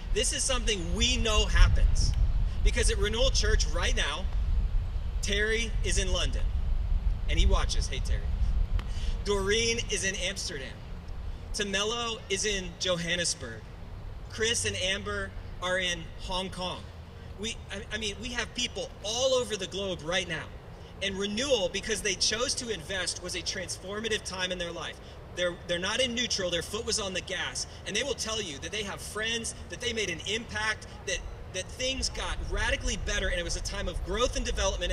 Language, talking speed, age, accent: English, 175 wpm, 30-49, American